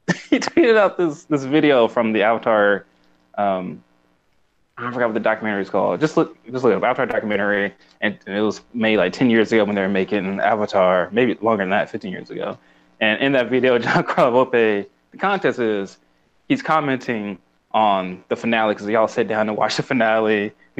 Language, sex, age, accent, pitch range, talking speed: English, male, 20-39, American, 95-125 Hz, 200 wpm